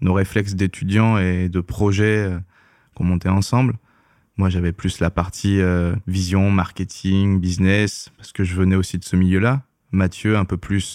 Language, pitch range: French, 90-105 Hz